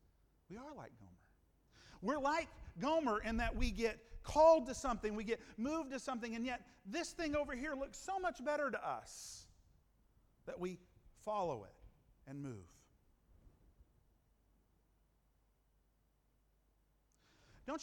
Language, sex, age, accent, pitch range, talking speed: English, male, 50-69, American, 135-230 Hz, 130 wpm